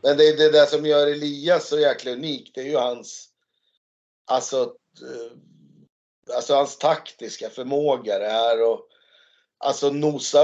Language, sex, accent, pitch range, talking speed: Swedish, male, native, 120-155 Hz, 145 wpm